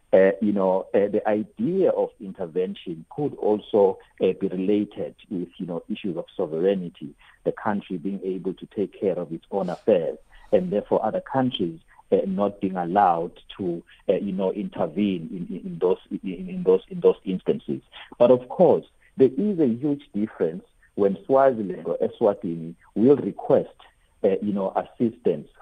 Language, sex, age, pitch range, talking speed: English, male, 50-69, 95-160 Hz, 165 wpm